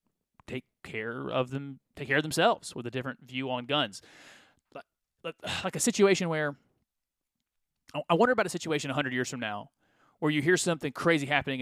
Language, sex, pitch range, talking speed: English, male, 130-165 Hz, 175 wpm